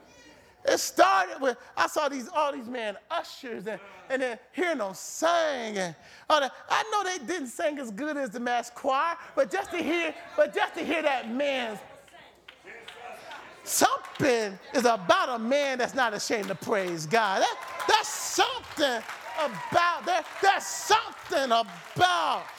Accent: American